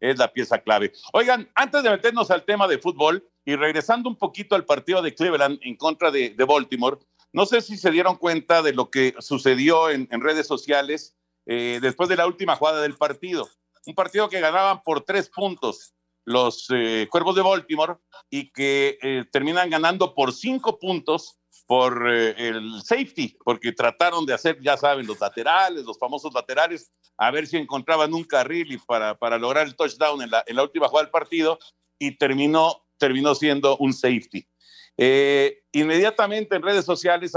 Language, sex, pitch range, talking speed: Spanish, male, 130-180 Hz, 180 wpm